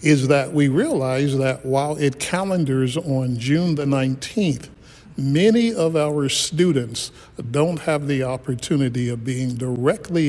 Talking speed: 135 wpm